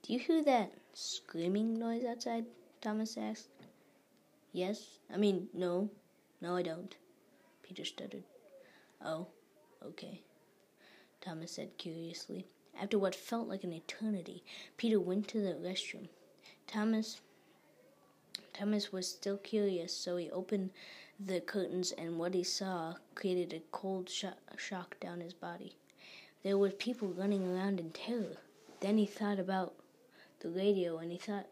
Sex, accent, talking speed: female, American, 135 wpm